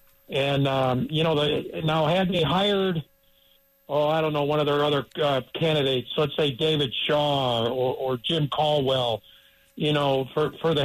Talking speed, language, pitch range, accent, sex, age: 175 wpm, English, 130-170 Hz, American, male, 60-79